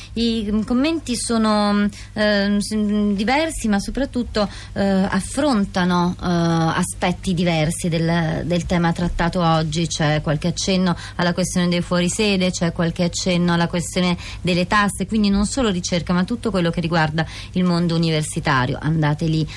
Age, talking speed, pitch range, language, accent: 30-49, 140 wpm, 165-200 Hz, Italian, native